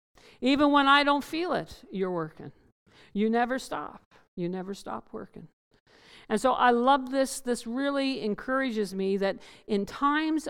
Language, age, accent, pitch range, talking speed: English, 50-69, American, 180-245 Hz, 155 wpm